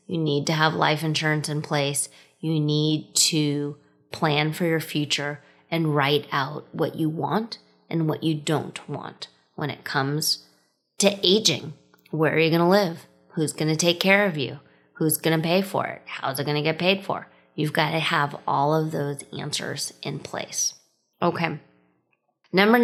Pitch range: 150-185 Hz